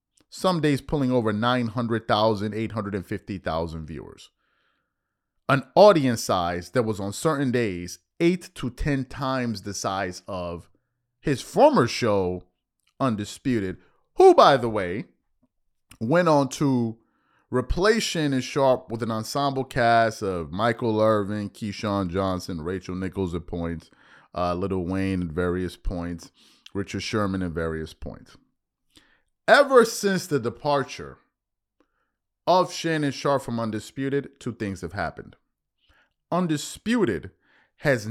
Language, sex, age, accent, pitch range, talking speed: English, male, 30-49, American, 100-145 Hz, 120 wpm